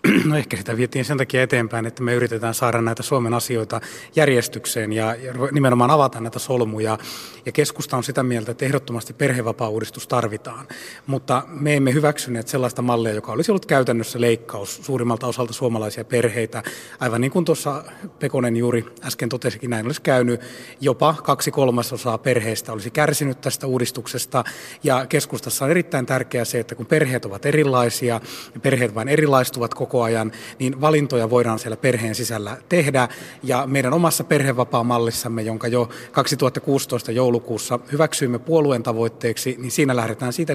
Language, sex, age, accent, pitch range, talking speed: Finnish, male, 30-49, native, 115-135 Hz, 150 wpm